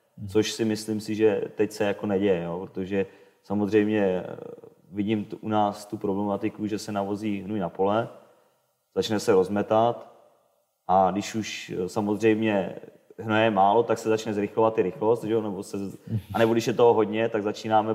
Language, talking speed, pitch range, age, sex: Czech, 145 wpm, 100-110 Hz, 30-49, male